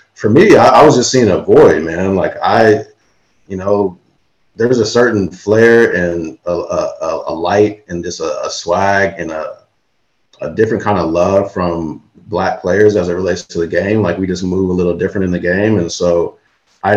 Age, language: 30-49, English